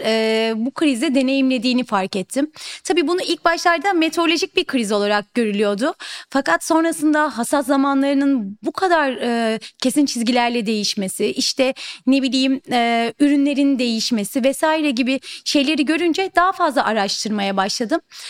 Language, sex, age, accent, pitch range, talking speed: Turkish, female, 30-49, native, 245-305 Hz, 125 wpm